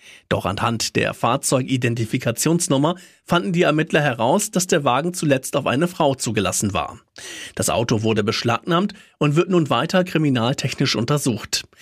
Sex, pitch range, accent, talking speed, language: male, 115-160 Hz, German, 135 wpm, German